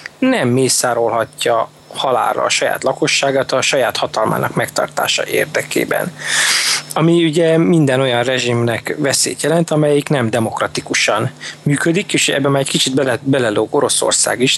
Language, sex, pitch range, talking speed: Hungarian, male, 125-155 Hz, 130 wpm